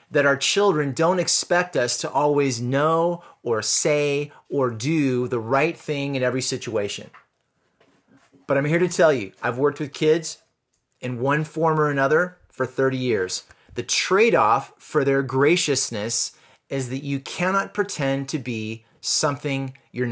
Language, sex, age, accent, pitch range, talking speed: English, male, 30-49, American, 135-170 Hz, 150 wpm